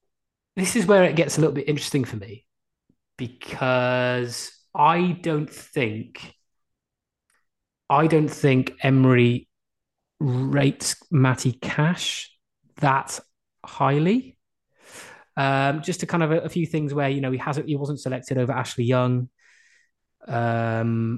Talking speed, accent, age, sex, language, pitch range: 130 wpm, British, 20-39, male, English, 115-140 Hz